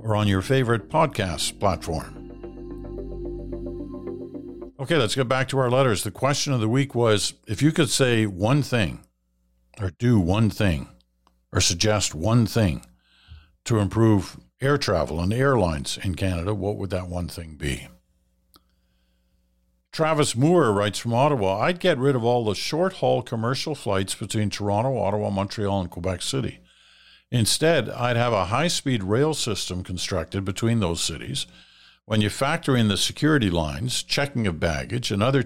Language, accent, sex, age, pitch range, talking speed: English, American, male, 60-79, 85-120 Hz, 155 wpm